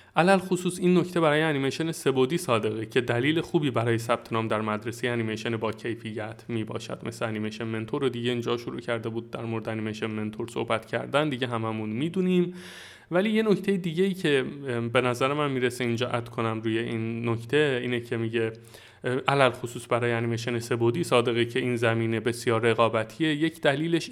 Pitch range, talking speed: 115-140 Hz, 175 wpm